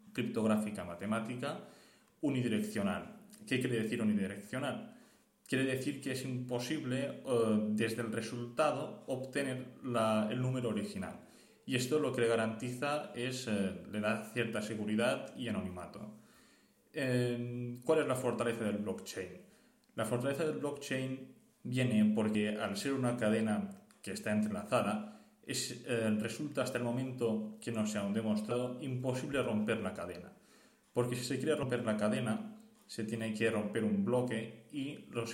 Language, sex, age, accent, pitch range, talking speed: Spanish, male, 20-39, Spanish, 110-135 Hz, 140 wpm